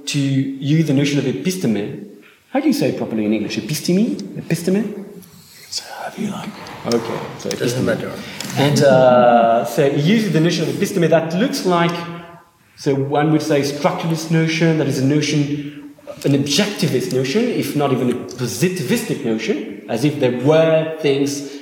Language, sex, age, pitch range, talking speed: English, male, 30-49, 130-190 Hz, 165 wpm